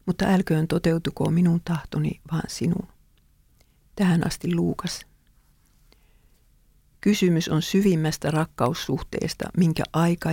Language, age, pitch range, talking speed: English, 50-69, 155-185 Hz, 95 wpm